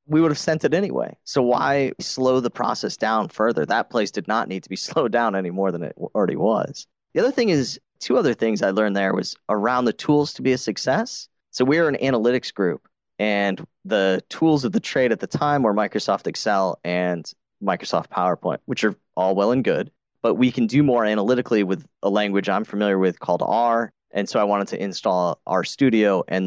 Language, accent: English, American